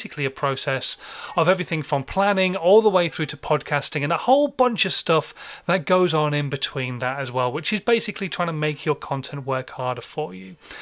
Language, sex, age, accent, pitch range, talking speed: English, male, 30-49, British, 145-190 Hz, 210 wpm